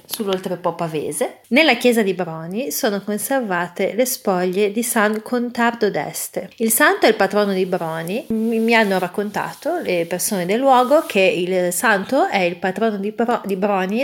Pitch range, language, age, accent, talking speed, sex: 185-235 Hz, Italian, 30-49, native, 160 wpm, female